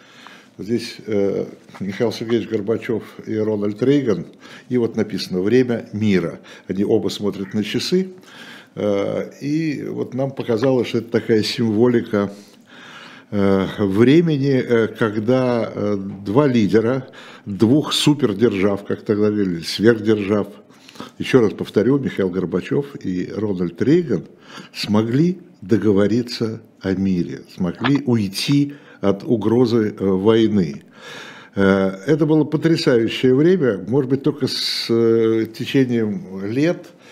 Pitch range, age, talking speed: 105-145 Hz, 60-79, 100 wpm